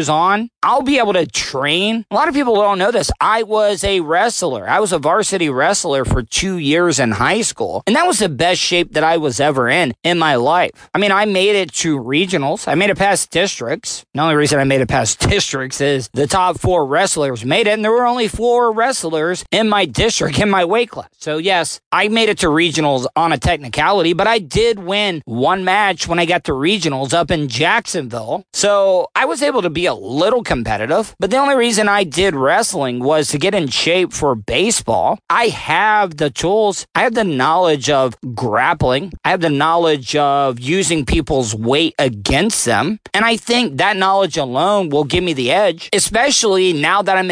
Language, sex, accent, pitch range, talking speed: English, male, American, 150-205 Hz, 210 wpm